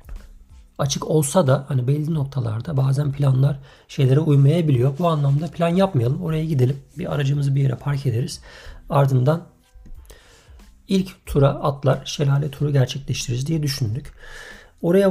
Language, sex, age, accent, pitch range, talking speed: Turkish, male, 50-69, native, 125-155 Hz, 125 wpm